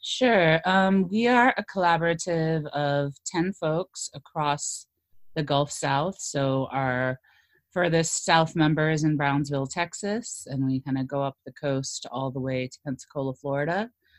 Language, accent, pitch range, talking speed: English, American, 125-150 Hz, 150 wpm